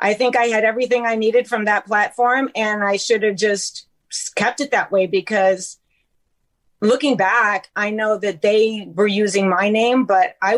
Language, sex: English, female